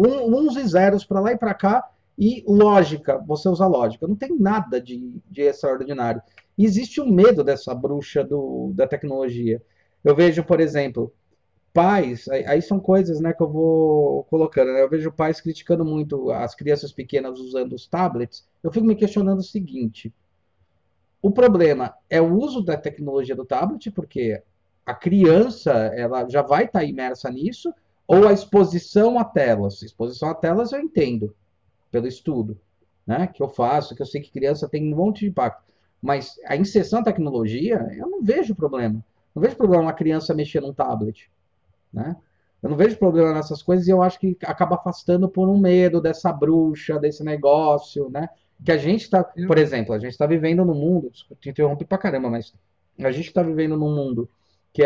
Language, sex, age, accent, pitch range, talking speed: Portuguese, male, 40-59, Brazilian, 130-185 Hz, 180 wpm